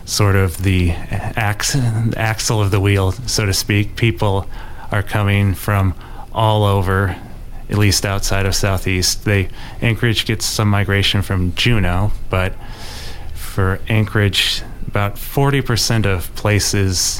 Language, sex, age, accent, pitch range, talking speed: English, male, 30-49, American, 95-105 Hz, 120 wpm